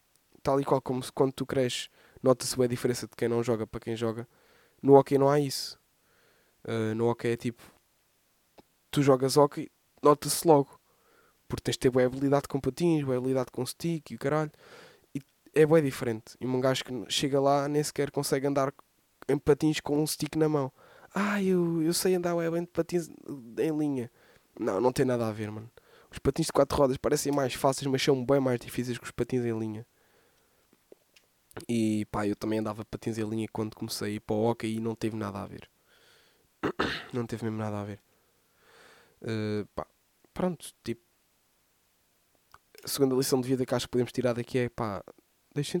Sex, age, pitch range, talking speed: male, 10-29, 115-145 Hz, 195 wpm